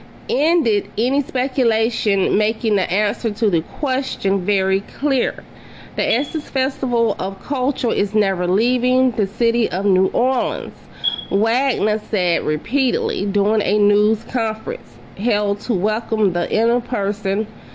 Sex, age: female, 30-49